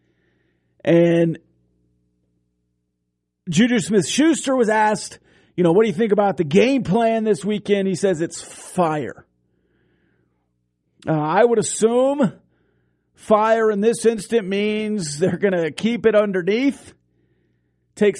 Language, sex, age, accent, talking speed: English, male, 40-59, American, 120 wpm